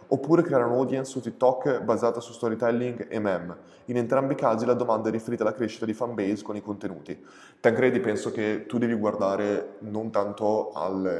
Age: 20-39